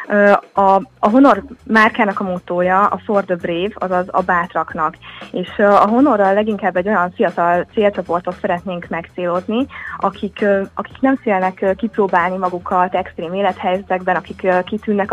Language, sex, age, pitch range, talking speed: Hungarian, female, 20-39, 175-200 Hz, 130 wpm